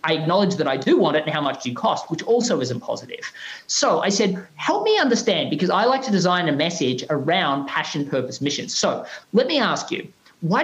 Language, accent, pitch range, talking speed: English, Australian, 155-230 Hz, 225 wpm